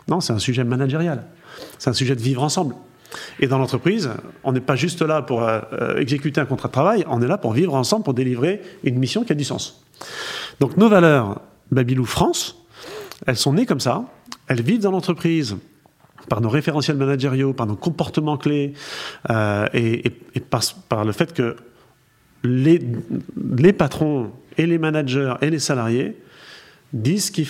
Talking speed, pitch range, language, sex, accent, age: 175 wpm, 120-155 Hz, French, male, French, 40-59